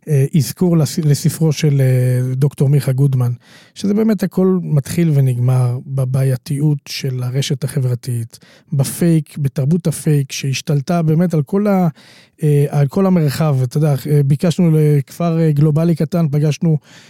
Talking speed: 115 wpm